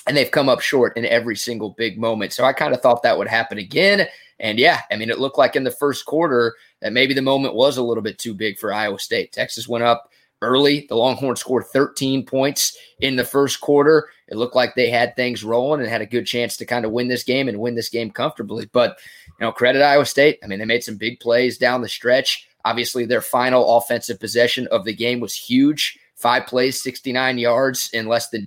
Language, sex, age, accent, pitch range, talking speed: English, male, 20-39, American, 115-135 Hz, 235 wpm